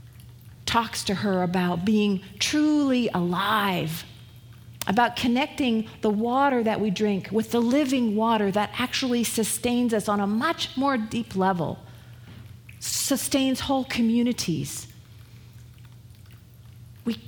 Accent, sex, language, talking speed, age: American, female, English, 110 wpm, 40-59